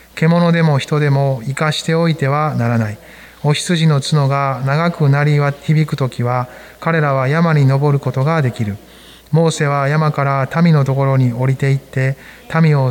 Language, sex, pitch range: Japanese, male, 120-155 Hz